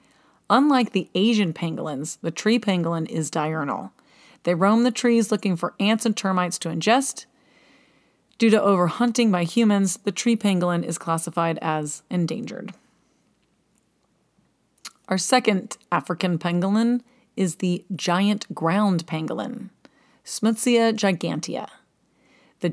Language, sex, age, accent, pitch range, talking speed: English, female, 30-49, American, 170-220 Hz, 115 wpm